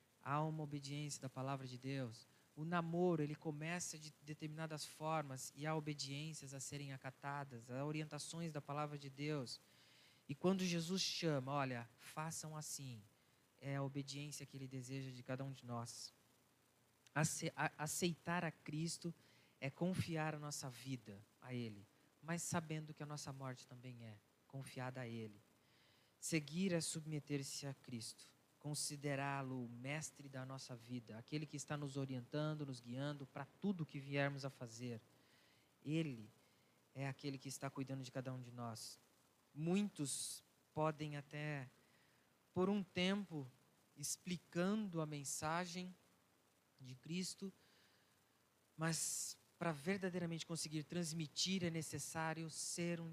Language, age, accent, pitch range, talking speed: Portuguese, 20-39, Brazilian, 130-155 Hz, 135 wpm